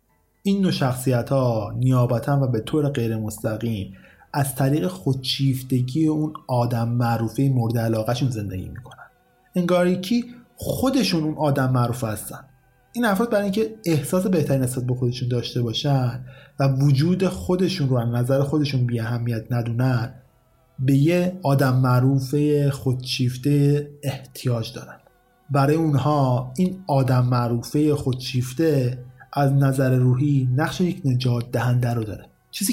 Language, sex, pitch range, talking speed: Persian, male, 120-155 Hz, 125 wpm